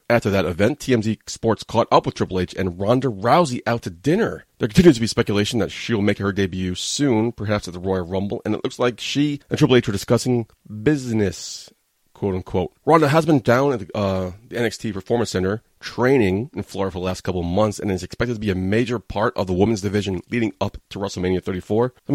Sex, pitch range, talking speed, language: male, 95-115 Hz, 220 wpm, English